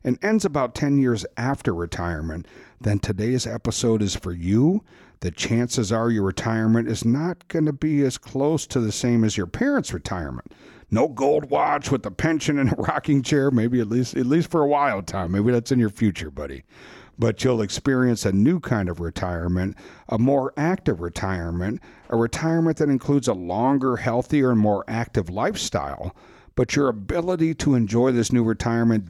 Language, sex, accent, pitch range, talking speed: English, male, American, 110-140 Hz, 180 wpm